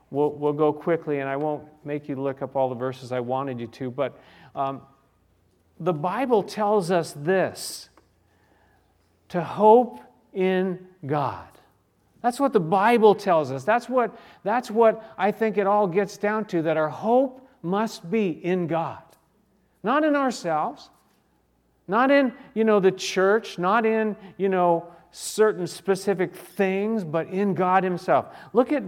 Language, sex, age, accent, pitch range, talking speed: English, male, 40-59, American, 150-210 Hz, 155 wpm